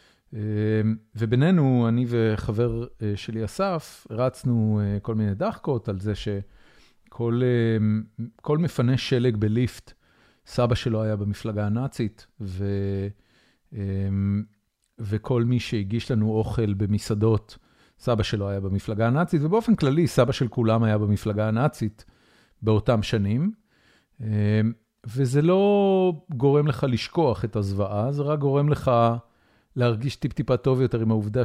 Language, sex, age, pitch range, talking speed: Hebrew, male, 40-59, 105-125 Hz, 115 wpm